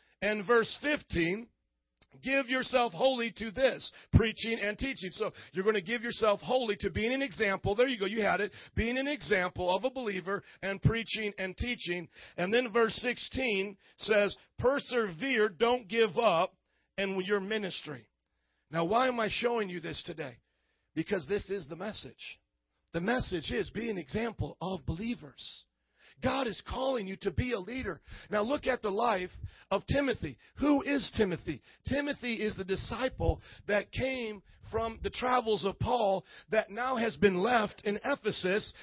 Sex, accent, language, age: male, American, English, 50-69